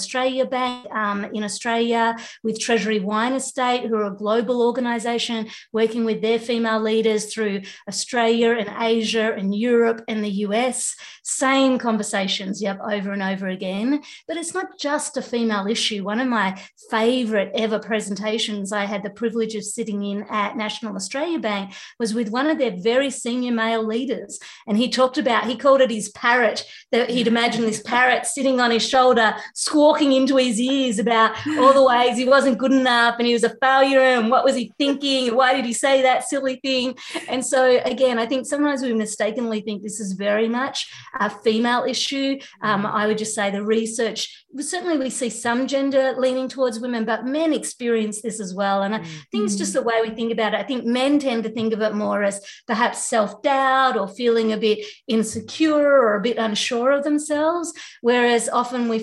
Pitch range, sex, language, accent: 215-260 Hz, female, English, Australian